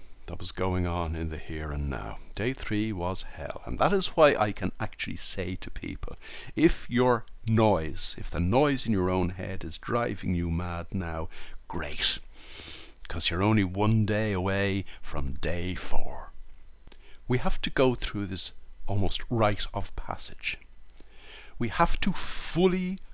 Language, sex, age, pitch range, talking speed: English, male, 60-79, 90-120 Hz, 160 wpm